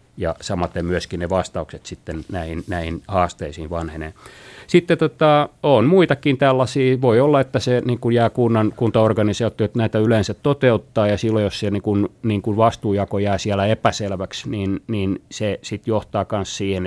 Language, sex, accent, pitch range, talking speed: Finnish, male, native, 95-120 Hz, 165 wpm